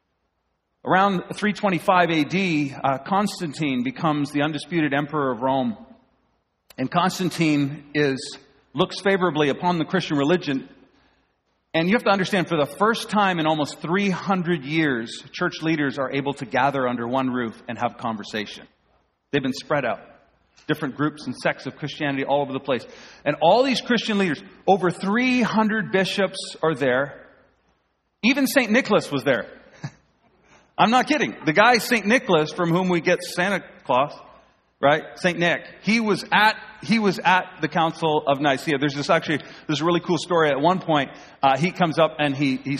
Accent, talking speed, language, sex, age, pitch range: American, 165 wpm, English, male, 40-59, 140-185 Hz